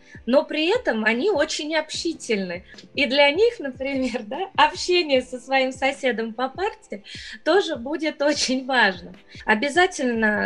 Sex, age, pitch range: female, 20-39, 225-285 Hz